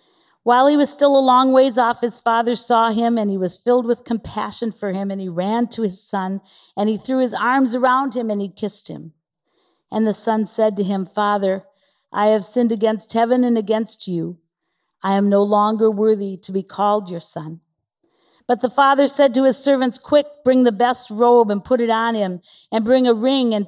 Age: 50-69